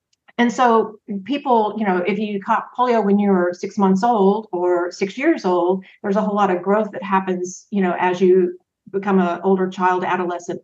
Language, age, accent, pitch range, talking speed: English, 50-69, American, 185-210 Hz, 205 wpm